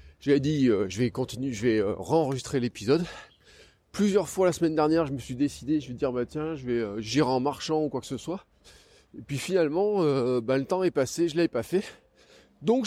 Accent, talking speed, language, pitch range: French, 245 wpm, French, 115-160 Hz